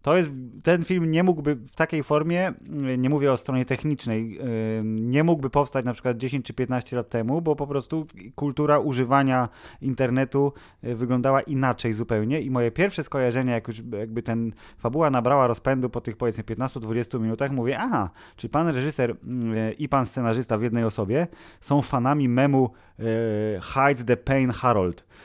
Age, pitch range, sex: 20-39, 115-145 Hz, male